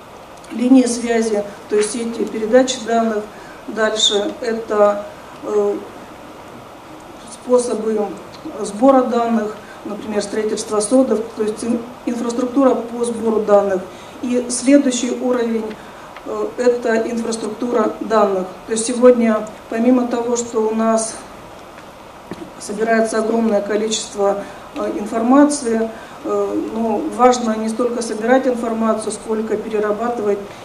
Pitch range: 215-240 Hz